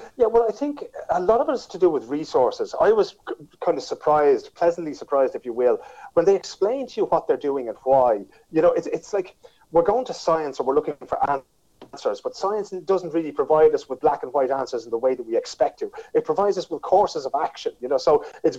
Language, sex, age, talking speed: English, male, 30-49, 250 wpm